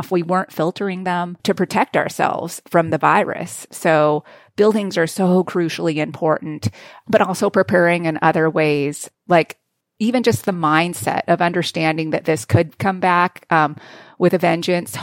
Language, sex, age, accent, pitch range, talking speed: English, female, 30-49, American, 155-180 Hz, 150 wpm